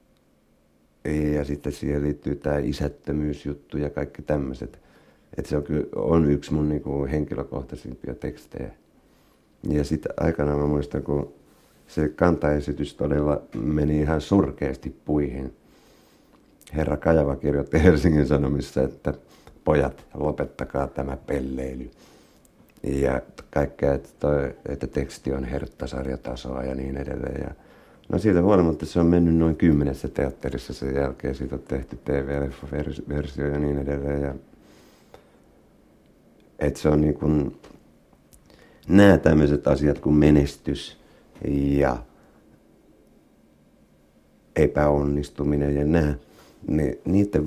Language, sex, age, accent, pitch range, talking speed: Finnish, male, 60-79, native, 70-75 Hz, 105 wpm